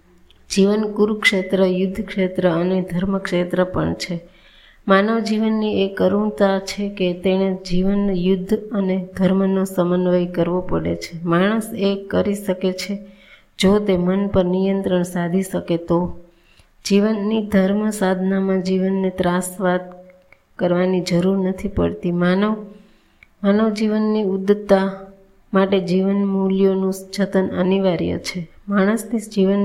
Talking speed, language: 95 wpm, Gujarati